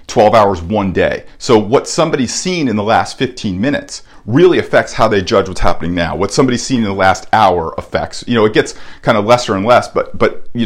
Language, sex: English, male